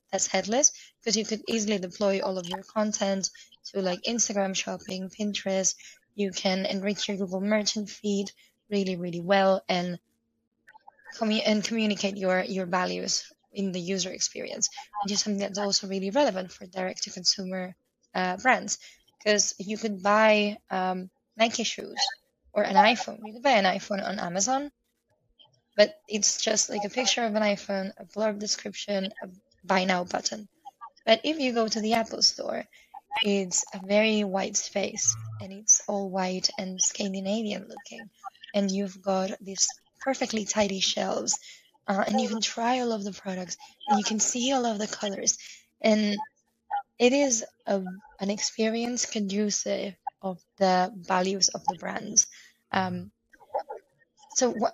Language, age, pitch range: English, 20-39, 190-225 Hz